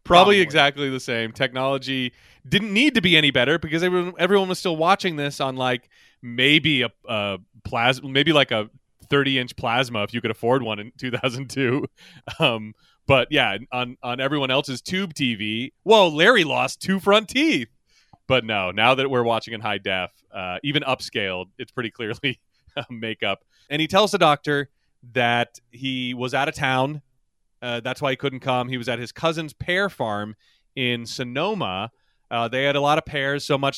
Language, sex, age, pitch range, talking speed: English, male, 30-49, 120-145 Hz, 185 wpm